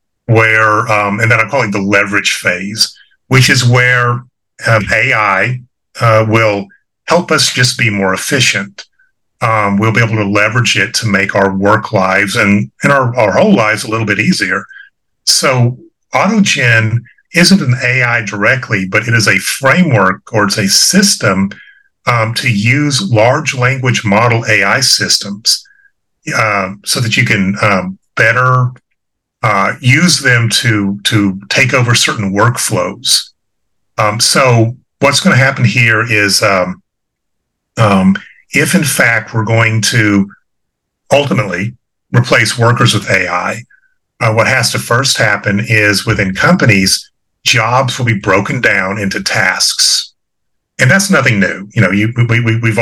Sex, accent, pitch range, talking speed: male, American, 105-130 Hz, 150 wpm